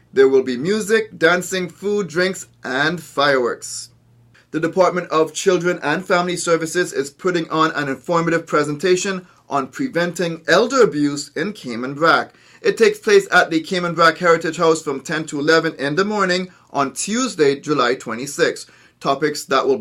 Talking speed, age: 160 wpm, 30-49